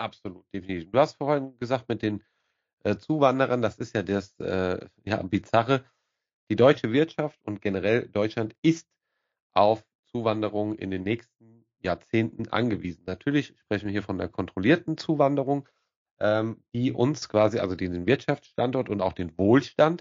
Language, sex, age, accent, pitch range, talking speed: German, male, 40-59, German, 105-135 Hz, 145 wpm